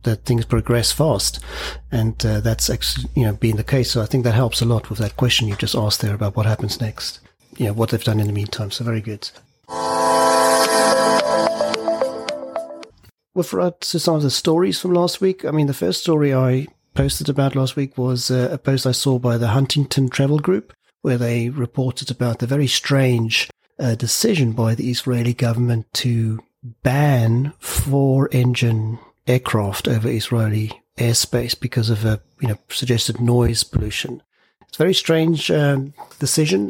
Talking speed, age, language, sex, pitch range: 180 wpm, 30-49, English, male, 115-135 Hz